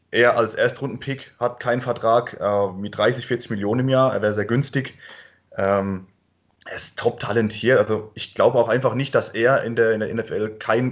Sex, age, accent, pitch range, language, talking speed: male, 20-39, German, 115-150 Hz, German, 190 wpm